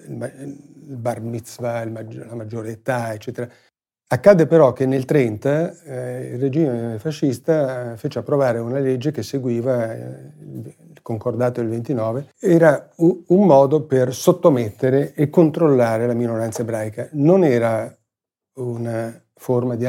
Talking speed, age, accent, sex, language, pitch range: 120 wpm, 40-59, native, male, Italian, 115-140 Hz